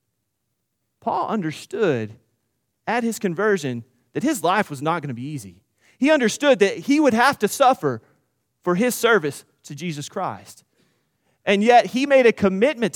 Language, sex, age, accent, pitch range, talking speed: English, male, 30-49, American, 120-195 Hz, 155 wpm